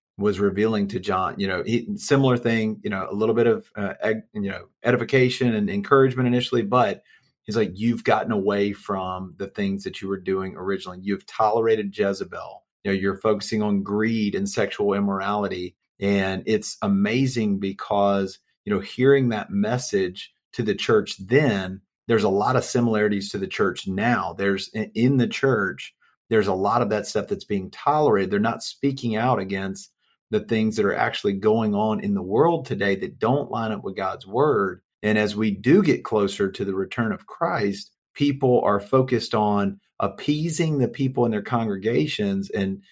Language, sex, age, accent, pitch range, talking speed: English, male, 40-59, American, 100-145 Hz, 180 wpm